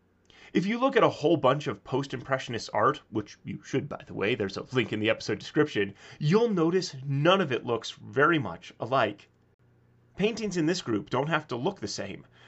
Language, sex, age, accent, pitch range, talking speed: English, male, 30-49, American, 120-175 Hz, 200 wpm